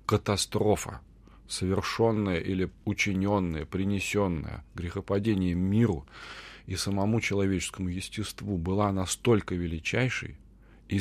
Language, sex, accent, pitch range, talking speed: Russian, male, native, 90-115 Hz, 80 wpm